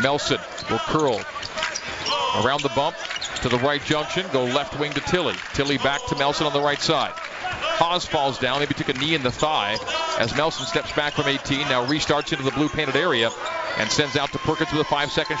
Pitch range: 140-165 Hz